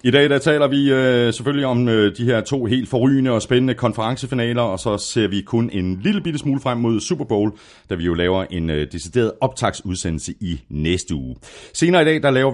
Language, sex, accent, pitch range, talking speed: Danish, male, native, 90-130 Hz, 220 wpm